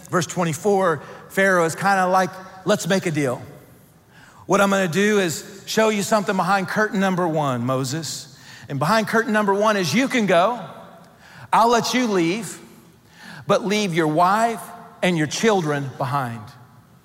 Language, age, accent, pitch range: English, 40-59, American, 160-215 Hz